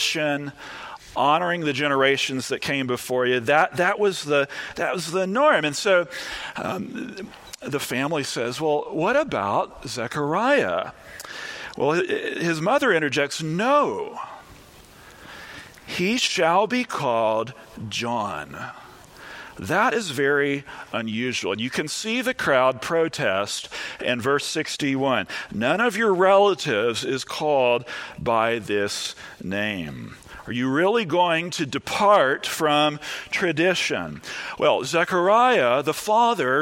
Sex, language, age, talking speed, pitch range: male, English, 40-59, 110 wpm, 140-195 Hz